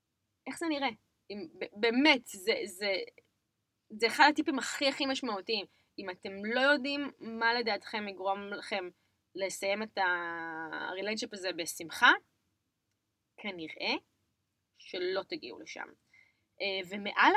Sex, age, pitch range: female, 20-39, 195-270 Hz